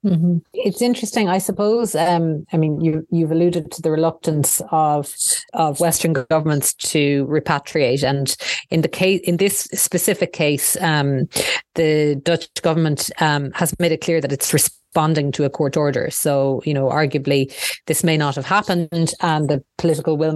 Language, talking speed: English, 170 wpm